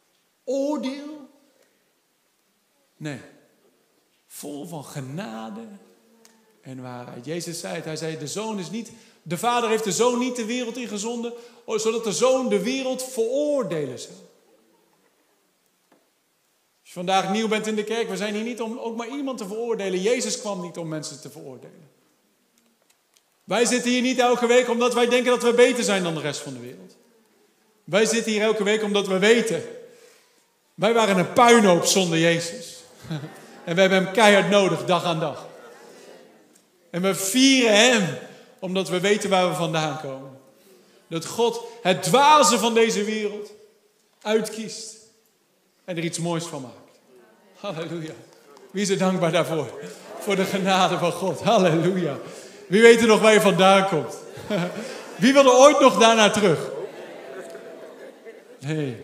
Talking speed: 155 wpm